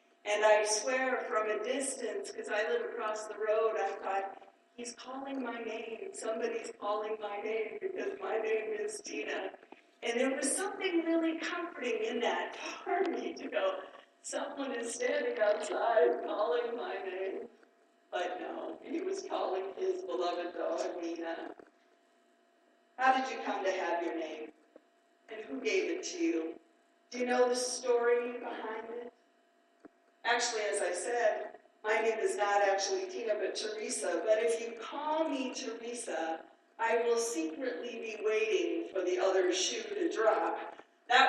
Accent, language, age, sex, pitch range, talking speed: American, English, 50-69, female, 200-335 Hz, 155 wpm